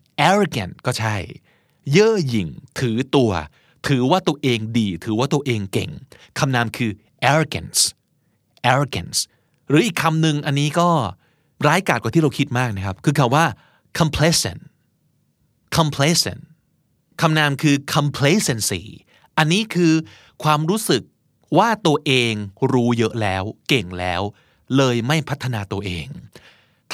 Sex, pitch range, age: male, 110-150 Hz, 30-49